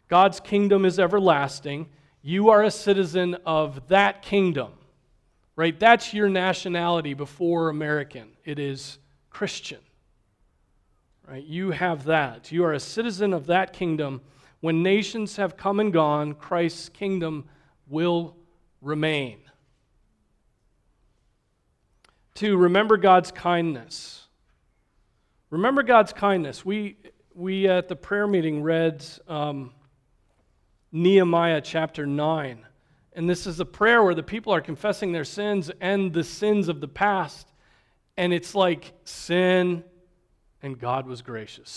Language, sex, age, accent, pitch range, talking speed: English, male, 40-59, American, 140-185 Hz, 120 wpm